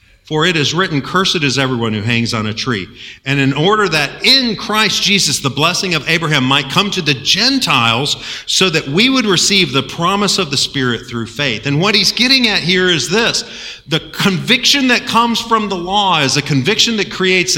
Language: English